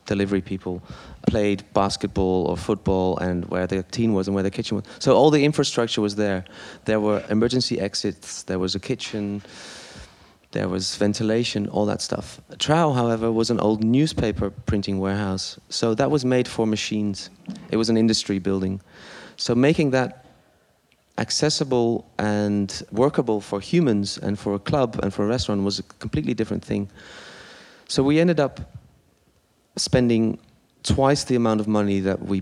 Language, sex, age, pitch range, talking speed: English, male, 30-49, 100-120 Hz, 165 wpm